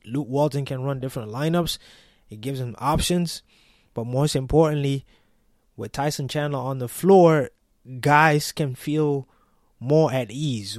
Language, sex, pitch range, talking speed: English, male, 120-140 Hz, 140 wpm